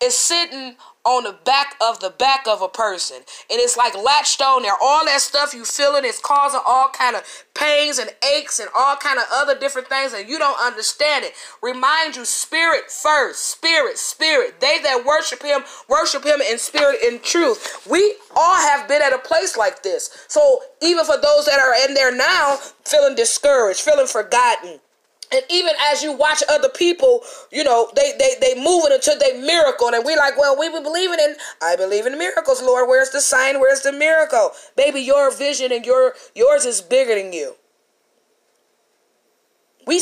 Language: English